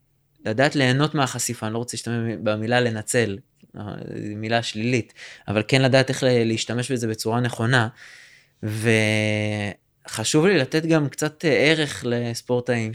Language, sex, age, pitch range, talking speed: Hebrew, male, 20-39, 115-140 Hz, 120 wpm